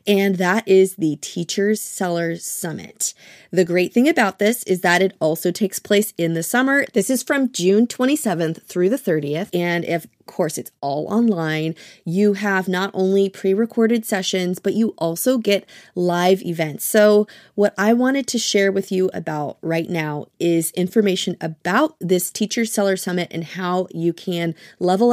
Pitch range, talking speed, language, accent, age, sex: 175-220 Hz, 170 wpm, English, American, 30-49, female